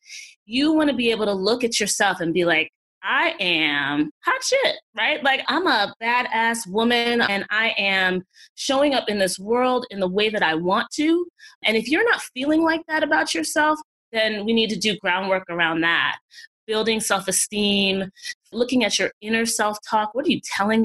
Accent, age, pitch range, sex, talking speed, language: American, 20-39, 180-245 Hz, female, 185 wpm, English